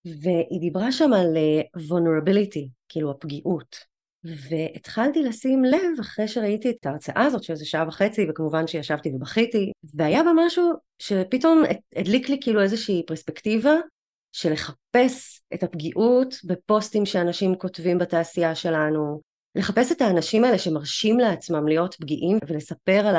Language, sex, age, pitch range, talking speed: Hebrew, female, 30-49, 165-225 Hz, 125 wpm